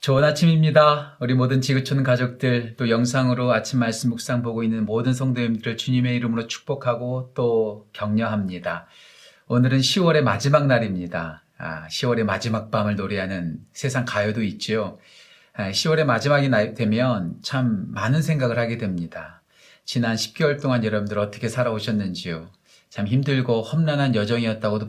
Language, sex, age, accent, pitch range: Korean, male, 40-59, native, 105-130 Hz